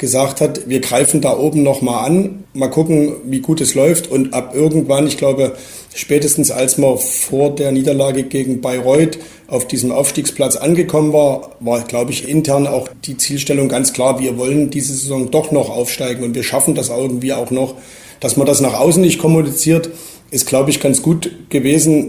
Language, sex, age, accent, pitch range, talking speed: German, male, 40-59, German, 130-150 Hz, 185 wpm